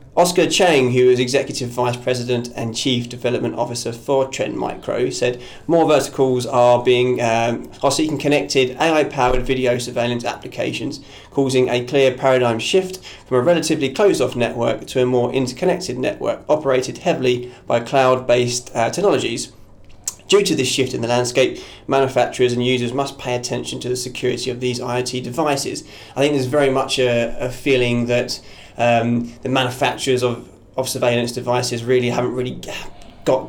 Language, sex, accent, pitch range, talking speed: English, male, British, 120-135 Hz, 160 wpm